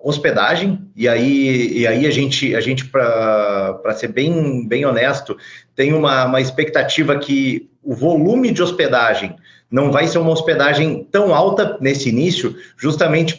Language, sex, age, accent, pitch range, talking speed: Portuguese, male, 40-59, Brazilian, 135-175 Hz, 150 wpm